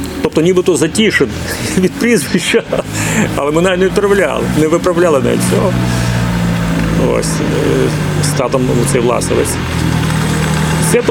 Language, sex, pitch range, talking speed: Ukrainian, male, 125-185 Hz, 95 wpm